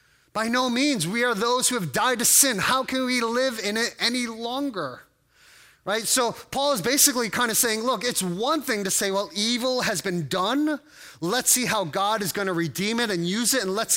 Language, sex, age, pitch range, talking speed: English, male, 30-49, 180-235 Hz, 220 wpm